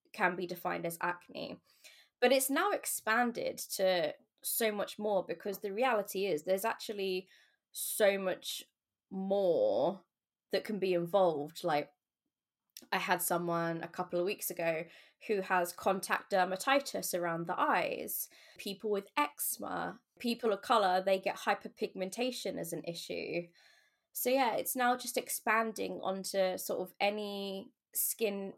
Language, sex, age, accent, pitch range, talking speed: French, female, 20-39, British, 180-225 Hz, 135 wpm